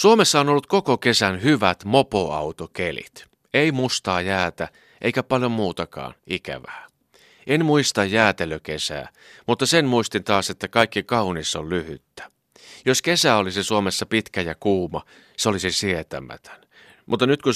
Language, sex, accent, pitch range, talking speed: Finnish, male, native, 85-120 Hz, 135 wpm